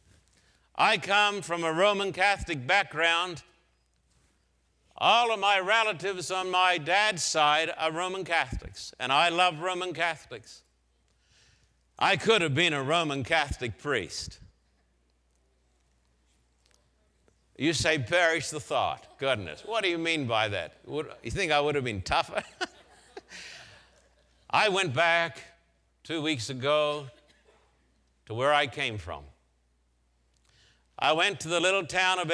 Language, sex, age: English, male, 60-79